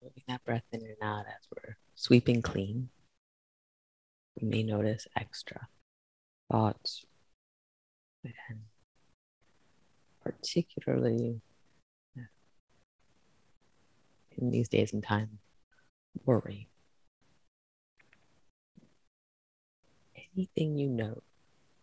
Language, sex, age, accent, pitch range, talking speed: English, female, 30-49, American, 100-125 Hz, 70 wpm